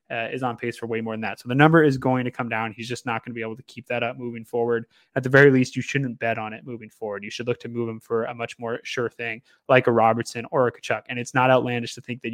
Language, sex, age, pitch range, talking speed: English, male, 20-39, 120-135 Hz, 320 wpm